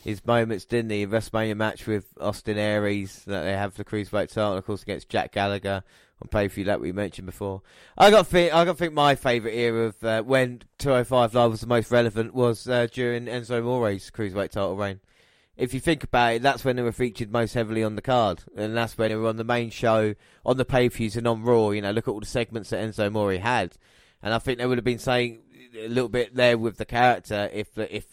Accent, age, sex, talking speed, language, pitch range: British, 20-39, male, 240 wpm, English, 105-120 Hz